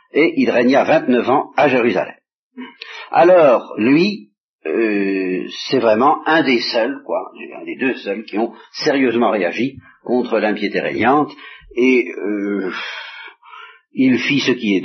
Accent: French